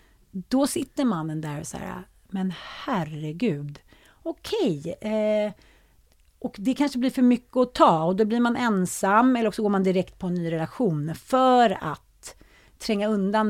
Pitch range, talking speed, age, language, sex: 180-230 Hz, 165 wpm, 40-59, Swedish, female